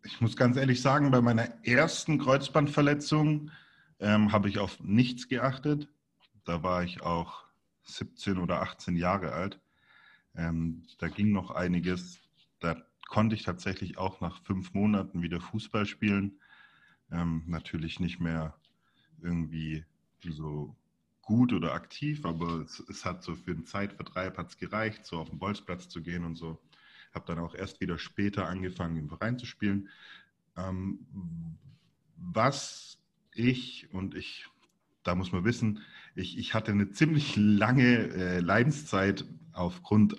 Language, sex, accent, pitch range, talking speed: German, male, German, 90-115 Hz, 145 wpm